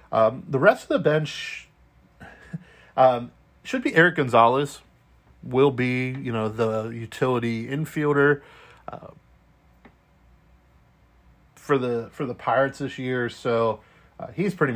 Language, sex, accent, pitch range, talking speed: English, male, American, 105-145 Hz, 120 wpm